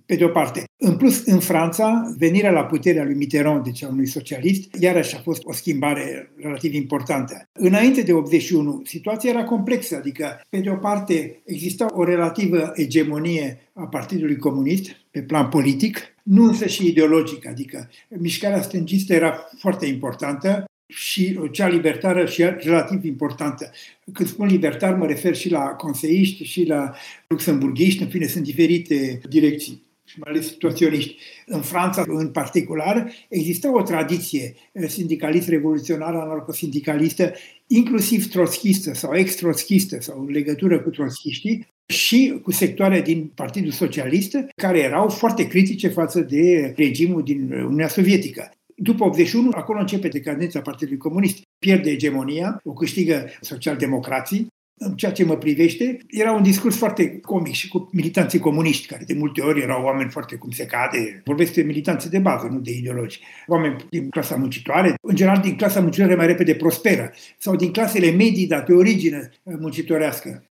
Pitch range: 155-190 Hz